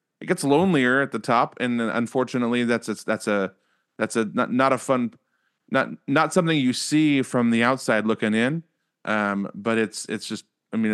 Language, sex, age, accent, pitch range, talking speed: English, male, 30-49, American, 110-135 Hz, 185 wpm